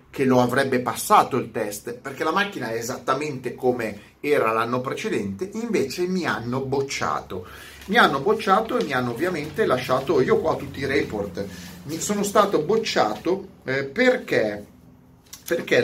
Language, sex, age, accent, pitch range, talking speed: Italian, male, 30-49, native, 115-175 Hz, 150 wpm